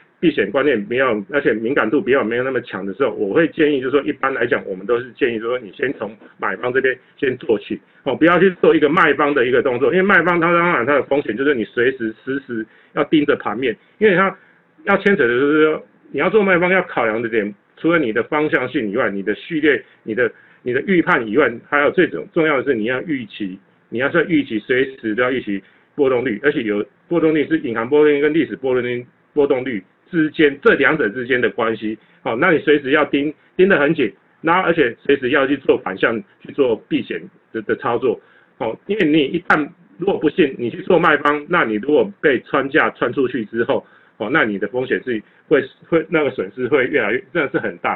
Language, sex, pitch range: Chinese, male, 130-180 Hz